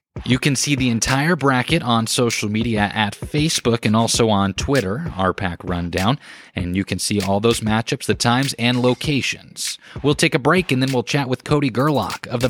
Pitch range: 110-150 Hz